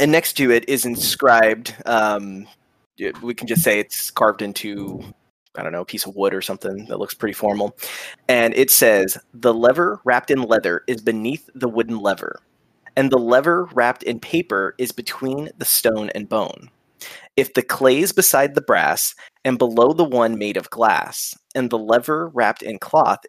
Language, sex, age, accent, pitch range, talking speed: English, male, 20-39, American, 115-140 Hz, 185 wpm